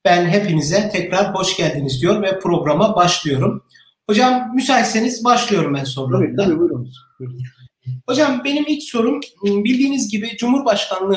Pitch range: 190-245 Hz